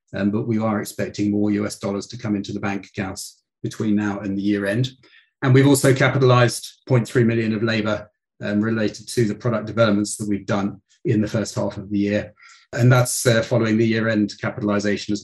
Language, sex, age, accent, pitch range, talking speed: English, male, 40-59, British, 105-130 Hz, 210 wpm